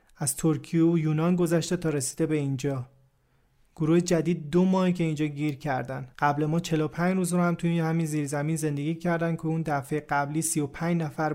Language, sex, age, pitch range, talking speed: Persian, male, 40-59, 150-175 Hz, 180 wpm